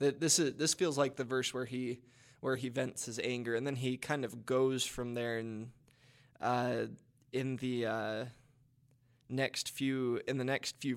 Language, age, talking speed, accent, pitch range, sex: English, 20-39, 180 wpm, American, 115-135 Hz, male